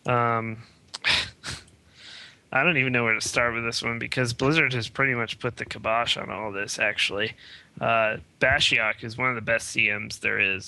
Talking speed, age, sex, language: 185 wpm, 20-39, male, English